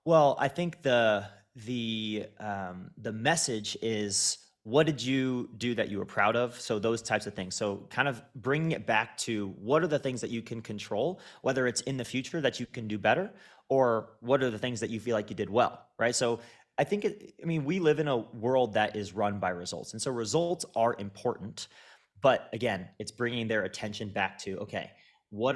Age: 30-49